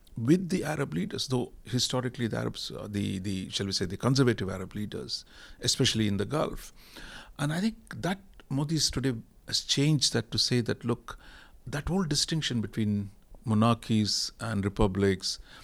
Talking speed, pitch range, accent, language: 160 wpm, 105-135 Hz, Indian, English